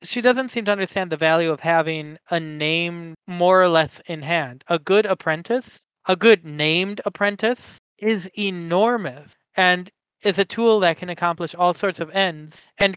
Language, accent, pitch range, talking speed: English, American, 165-200 Hz, 170 wpm